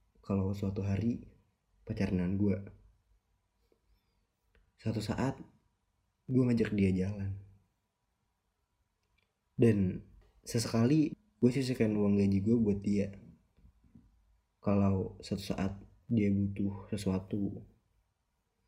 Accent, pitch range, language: native, 95-110 Hz, Indonesian